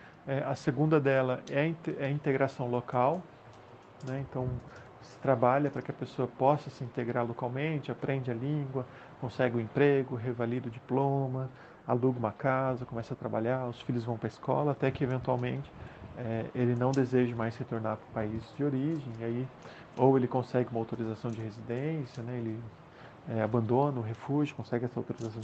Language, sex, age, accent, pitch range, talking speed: Portuguese, male, 40-59, Brazilian, 120-135 Hz, 170 wpm